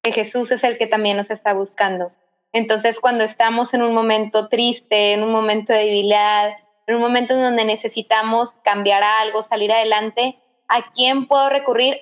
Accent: Mexican